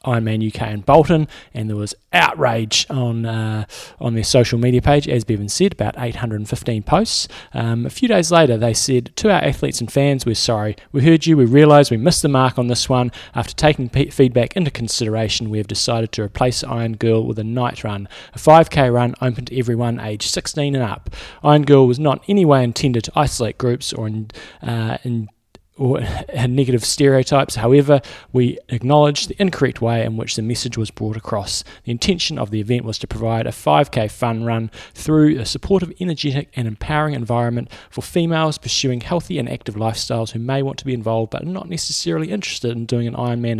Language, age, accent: English, 20-39, Australian